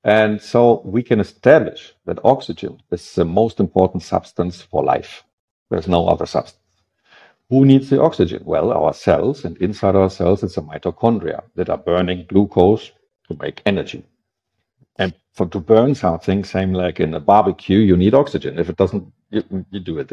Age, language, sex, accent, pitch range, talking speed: 50-69, English, male, German, 90-110 Hz, 175 wpm